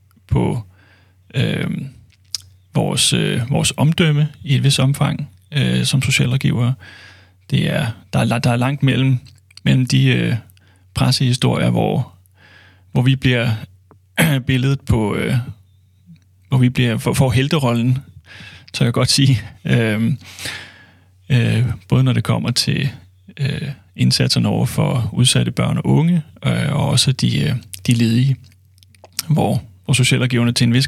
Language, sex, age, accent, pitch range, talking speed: Danish, male, 30-49, native, 95-135 Hz, 130 wpm